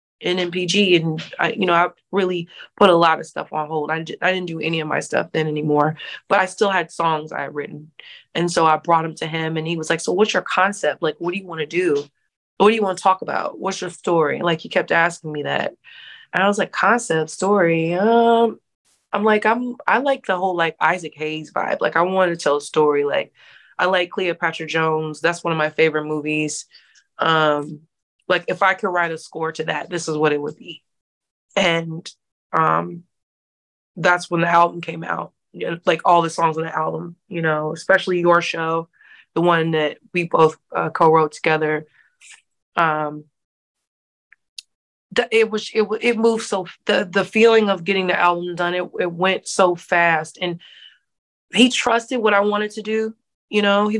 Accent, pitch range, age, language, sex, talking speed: American, 160-195 Hz, 20-39, English, female, 205 wpm